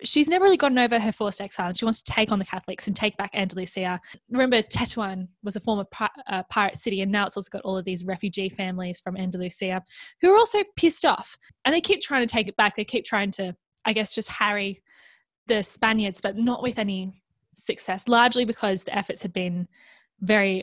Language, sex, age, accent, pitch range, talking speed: English, female, 10-29, Australian, 190-235 Hz, 220 wpm